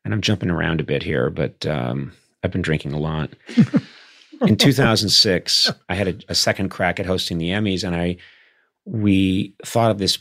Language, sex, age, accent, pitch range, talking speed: English, male, 40-59, American, 90-115 Hz, 190 wpm